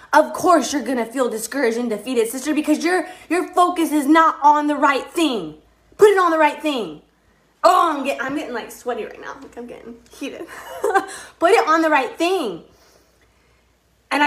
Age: 20-39